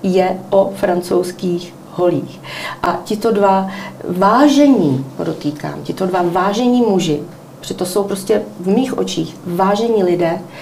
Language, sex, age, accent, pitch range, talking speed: Czech, female, 40-59, native, 170-195 Hz, 120 wpm